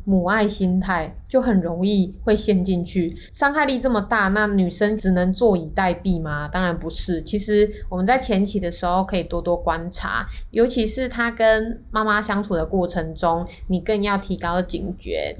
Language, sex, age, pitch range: Chinese, female, 20-39, 175-210 Hz